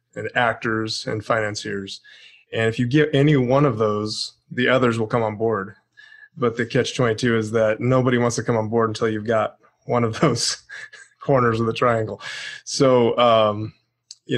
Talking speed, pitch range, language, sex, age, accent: 175 wpm, 110-125 Hz, English, male, 20-39, American